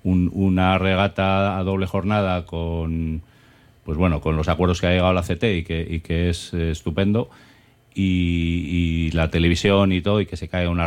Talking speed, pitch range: 190 wpm, 85-100 Hz